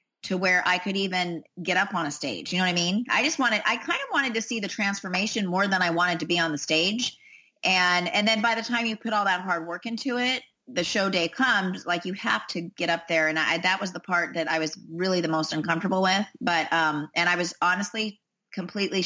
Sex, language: female, English